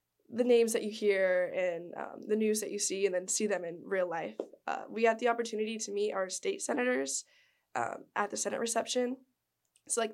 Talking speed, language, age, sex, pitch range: 215 wpm, English, 10-29, female, 190-225 Hz